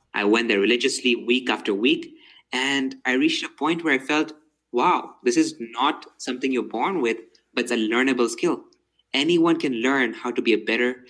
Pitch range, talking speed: 110-140 Hz, 195 wpm